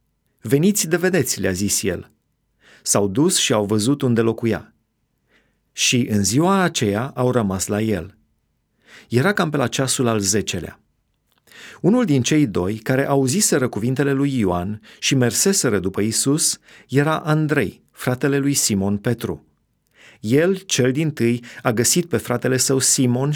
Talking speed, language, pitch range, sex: 145 wpm, Romanian, 115-140 Hz, male